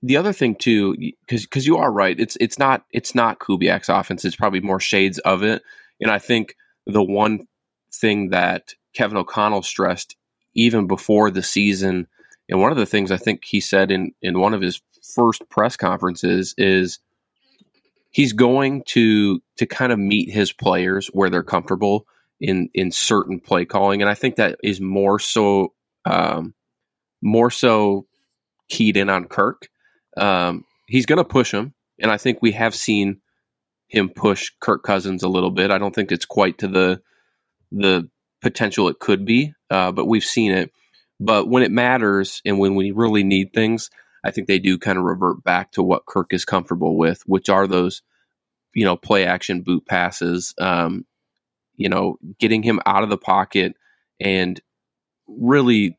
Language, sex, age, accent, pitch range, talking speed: English, male, 20-39, American, 95-110 Hz, 175 wpm